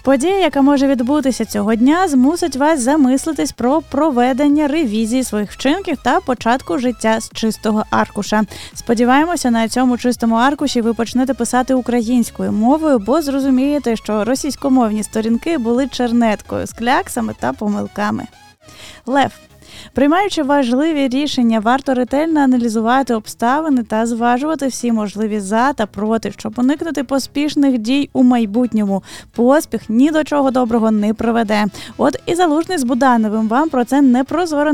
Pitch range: 220-280 Hz